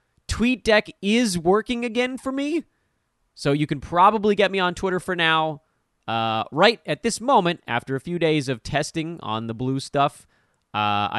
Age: 30-49